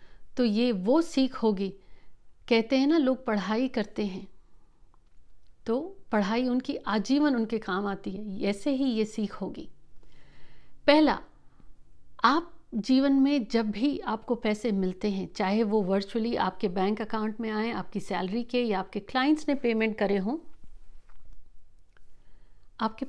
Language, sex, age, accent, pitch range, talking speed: Hindi, female, 50-69, native, 205-260 Hz, 140 wpm